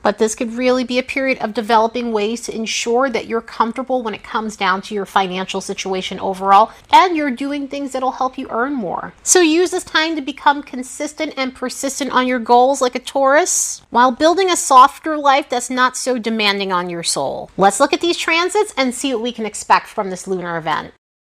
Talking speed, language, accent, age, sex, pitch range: 210 wpm, English, American, 30-49, female, 215-280 Hz